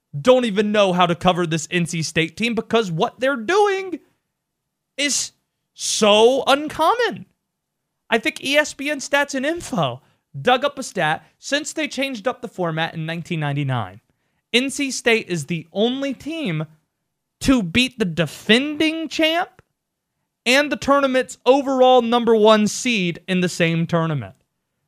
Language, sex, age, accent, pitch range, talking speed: English, male, 30-49, American, 170-275 Hz, 140 wpm